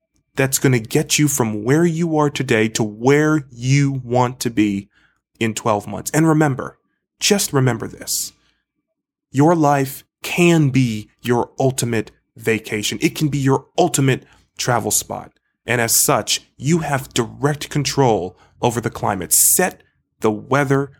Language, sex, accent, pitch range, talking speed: English, male, American, 110-150 Hz, 145 wpm